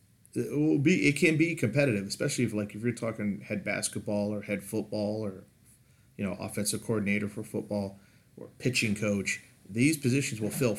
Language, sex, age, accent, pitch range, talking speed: English, male, 40-59, American, 105-120 Hz, 180 wpm